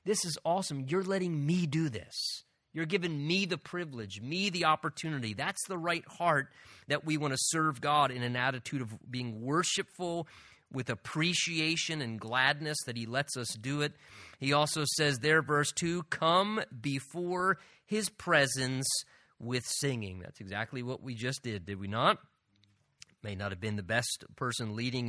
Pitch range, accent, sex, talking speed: 125-170 Hz, American, male, 170 wpm